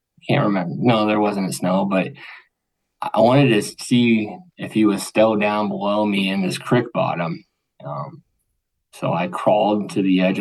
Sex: male